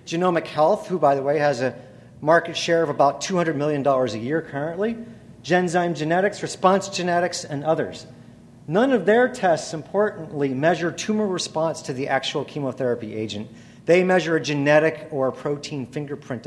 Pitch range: 140-195 Hz